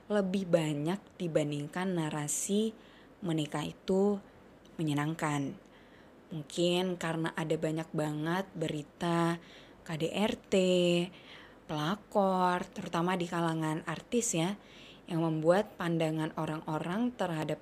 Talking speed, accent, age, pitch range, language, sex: 85 wpm, native, 20-39, 160-195 Hz, Indonesian, female